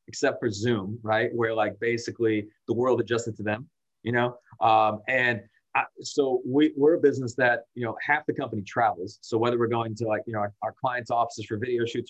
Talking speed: 210 wpm